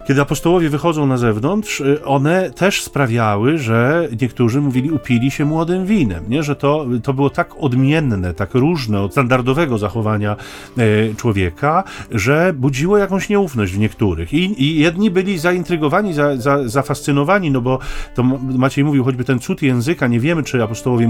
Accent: native